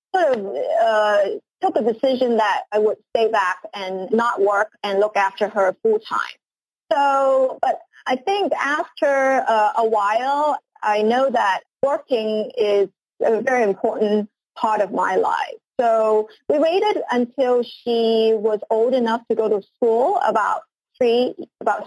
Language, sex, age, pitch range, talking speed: English, female, 30-49, 210-260 Hz, 150 wpm